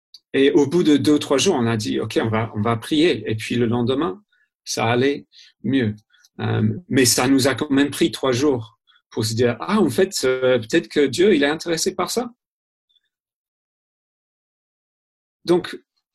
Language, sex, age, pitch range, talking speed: French, male, 40-59, 115-165 Hz, 185 wpm